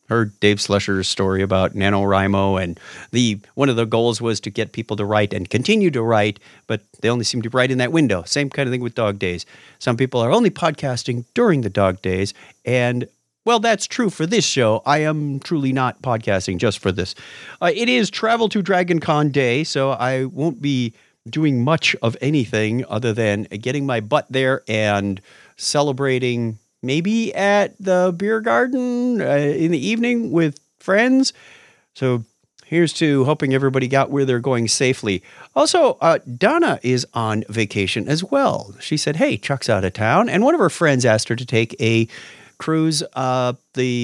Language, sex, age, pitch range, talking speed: English, male, 50-69, 110-155 Hz, 185 wpm